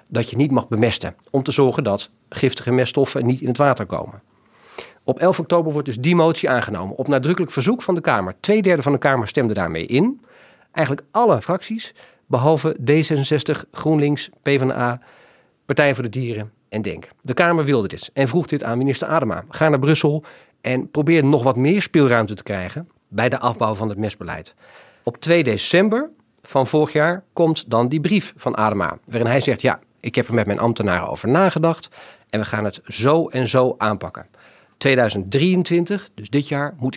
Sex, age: male, 40-59